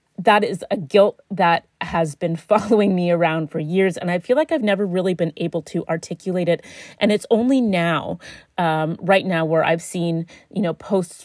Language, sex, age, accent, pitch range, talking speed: English, female, 30-49, American, 165-205 Hz, 195 wpm